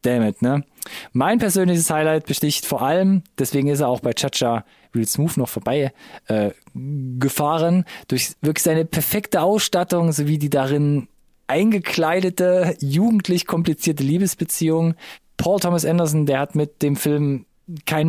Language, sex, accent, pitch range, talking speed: German, male, German, 140-175 Hz, 135 wpm